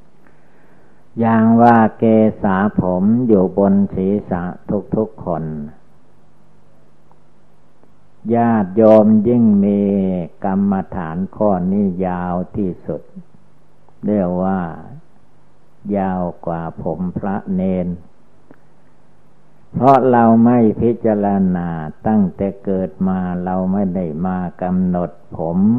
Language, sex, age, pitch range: Thai, male, 60-79, 90-110 Hz